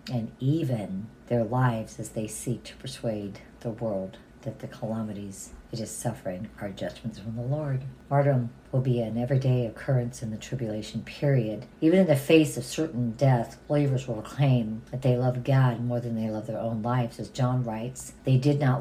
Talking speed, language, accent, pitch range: 185 wpm, English, American, 120-145 Hz